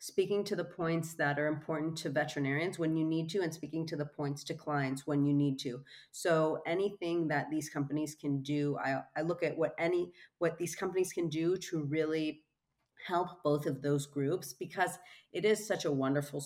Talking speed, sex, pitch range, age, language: 200 wpm, female, 145-170 Hz, 30-49, English